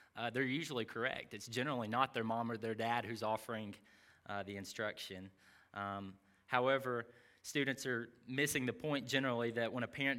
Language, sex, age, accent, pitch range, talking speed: English, male, 20-39, American, 105-125 Hz, 170 wpm